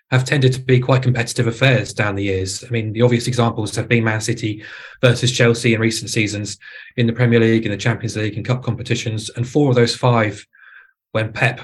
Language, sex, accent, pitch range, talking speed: English, male, British, 115-130 Hz, 215 wpm